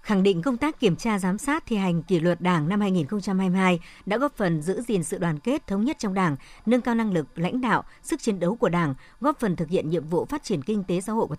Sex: male